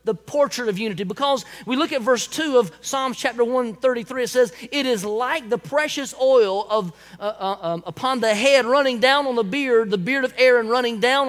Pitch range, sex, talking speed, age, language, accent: 230-285 Hz, male, 215 wpm, 30-49, English, American